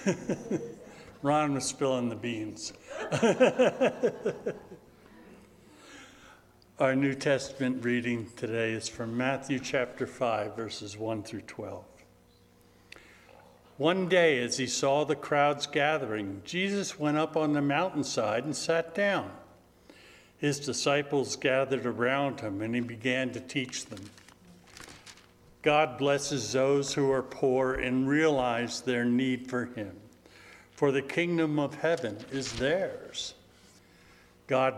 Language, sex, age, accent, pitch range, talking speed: English, male, 60-79, American, 120-145 Hz, 115 wpm